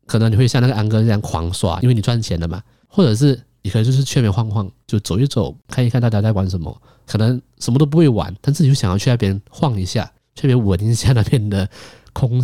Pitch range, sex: 90-115 Hz, male